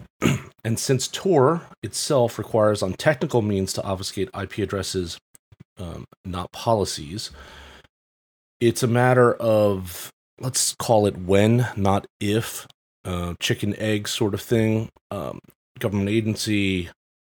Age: 30-49